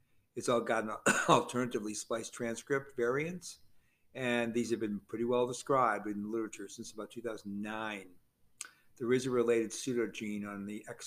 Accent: American